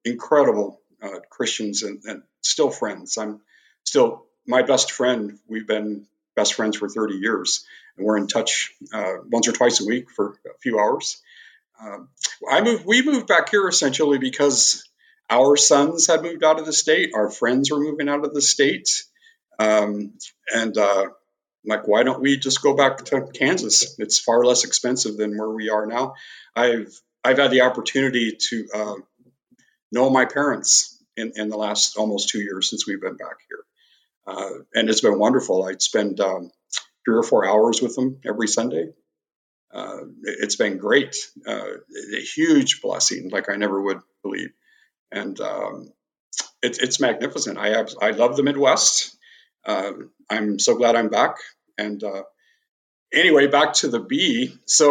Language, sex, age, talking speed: English, male, 50-69, 170 wpm